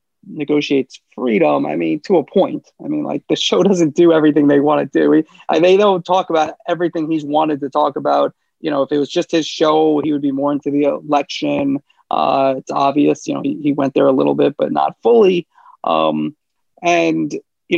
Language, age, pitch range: English, 30-49, 145-175 Hz